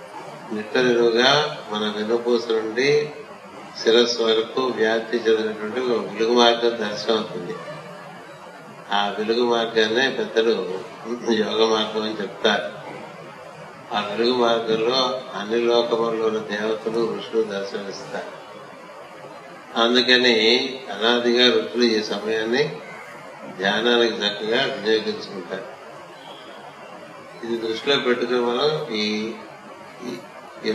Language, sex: Telugu, male